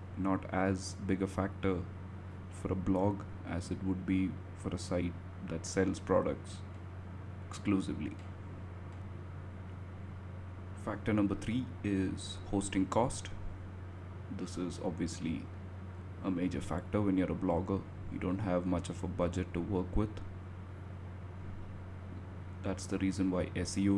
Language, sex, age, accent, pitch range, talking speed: English, male, 30-49, Indian, 90-95 Hz, 125 wpm